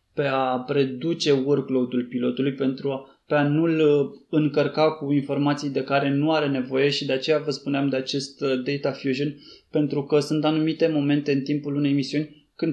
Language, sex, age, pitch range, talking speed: Romanian, male, 20-39, 140-155 Hz, 175 wpm